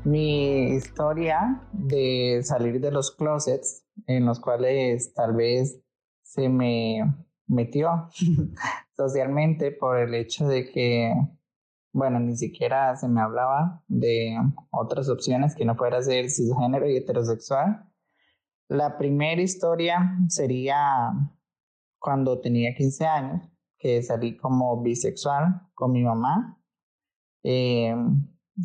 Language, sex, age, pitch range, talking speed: Spanish, male, 20-39, 120-155 Hz, 110 wpm